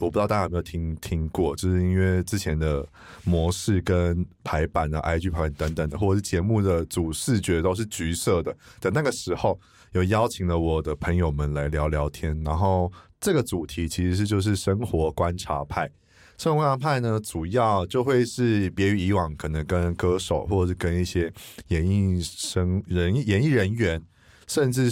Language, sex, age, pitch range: Chinese, male, 20-39, 85-110 Hz